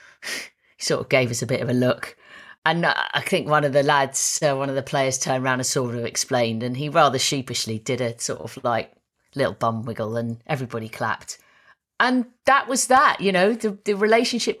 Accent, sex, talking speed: British, female, 215 wpm